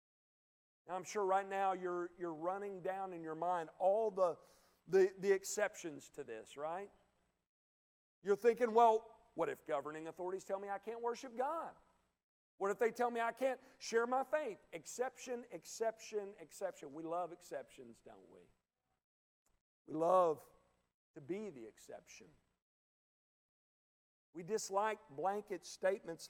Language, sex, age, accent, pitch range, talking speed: English, male, 50-69, American, 185-230 Hz, 135 wpm